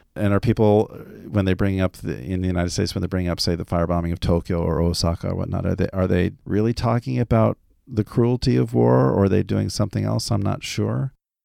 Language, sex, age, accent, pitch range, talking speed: English, male, 40-59, American, 85-110 Hz, 235 wpm